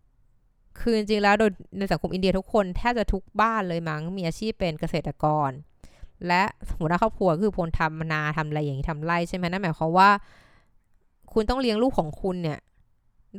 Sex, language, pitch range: female, Thai, 155-200 Hz